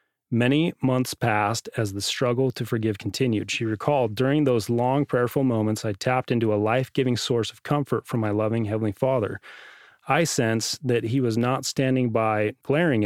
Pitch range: 110-135 Hz